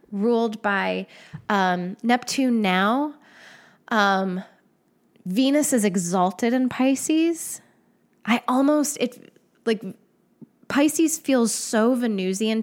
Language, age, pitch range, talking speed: English, 10-29, 190-230 Hz, 90 wpm